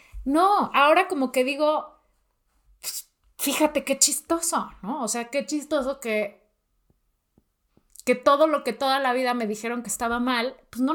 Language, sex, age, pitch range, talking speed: Spanish, female, 30-49, 220-280 Hz, 155 wpm